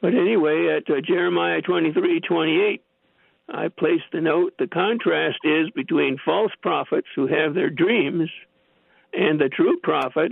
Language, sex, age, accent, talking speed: English, male, 60-79, American, 155 wpm